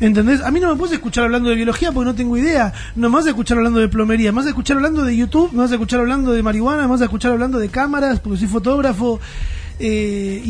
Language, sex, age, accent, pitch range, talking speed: Spanish, male, 30-49, Argentinian, 180-245 Hz, 245 wpm